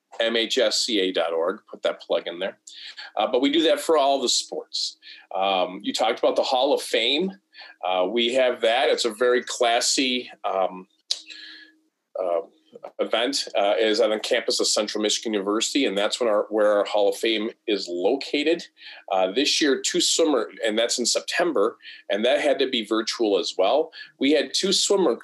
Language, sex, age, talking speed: English, male, 40-59, 180 wpm